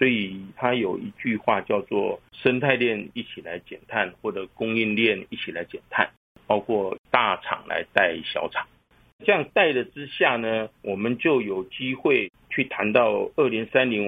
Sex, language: male, Chinese